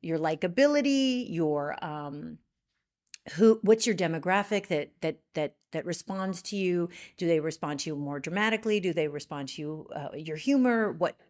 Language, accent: English, American